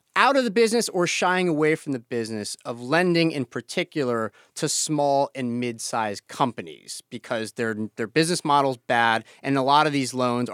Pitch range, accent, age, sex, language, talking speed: 115-155 Hz, American, 30-49, male, English, 180 wpm